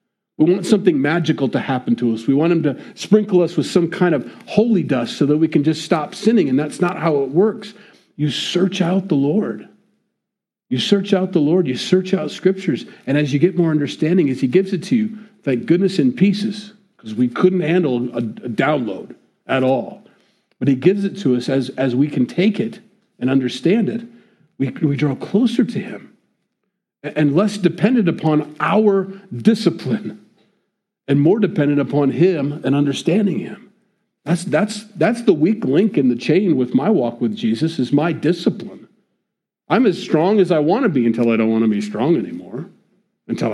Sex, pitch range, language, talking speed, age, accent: male, 145-210 Hz, English, 195 wpm, 50-69, American